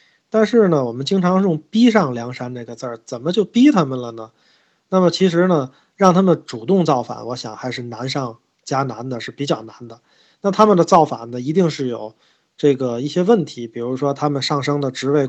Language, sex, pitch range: Chinese, male, 125-160 Hz